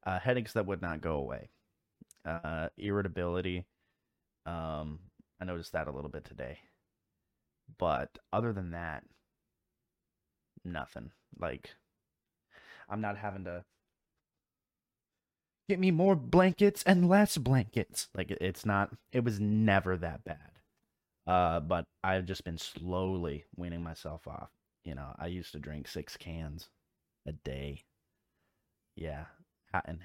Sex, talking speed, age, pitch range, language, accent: male, 130 wpm, 30-49, 80-110 Hz, English, American